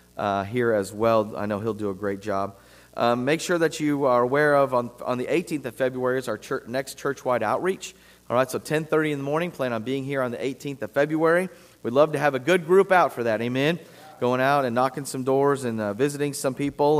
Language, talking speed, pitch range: English, 245 wpm, 120-150 Hz